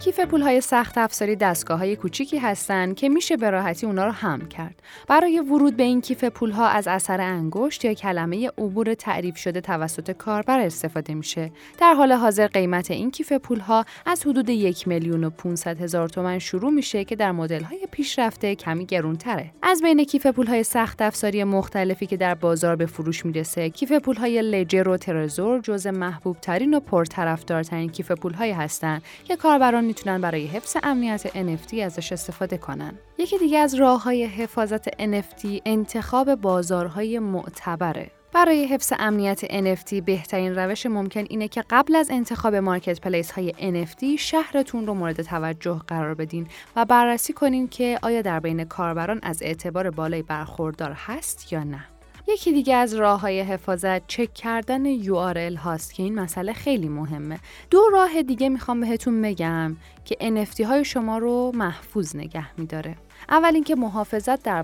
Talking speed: 160 wpm